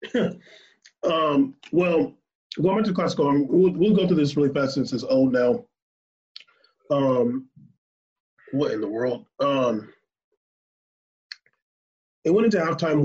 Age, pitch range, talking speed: 30-49, 135-170 Hz, 115 wpm